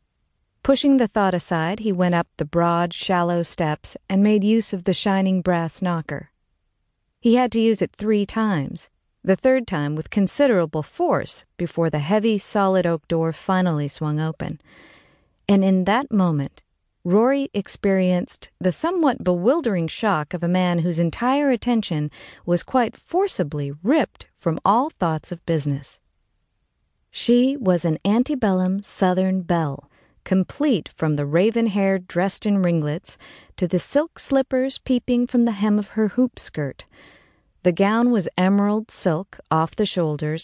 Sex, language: female, English